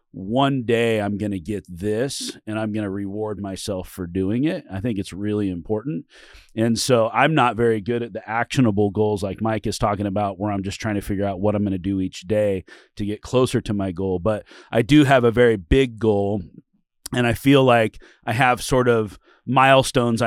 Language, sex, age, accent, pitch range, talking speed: English, male, 30-49, American, 100-125 Hz, 215 wpm